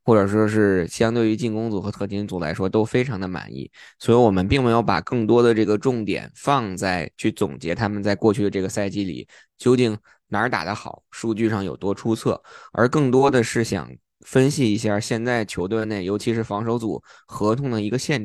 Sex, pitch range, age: male, 95-115 Hz, 20-39